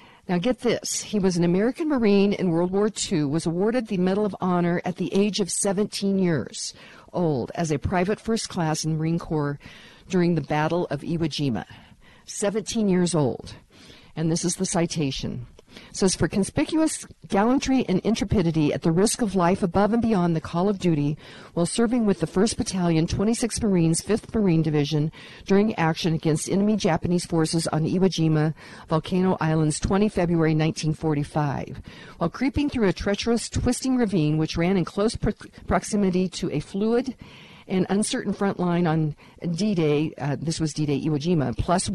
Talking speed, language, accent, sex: 165 wpm, English, American, female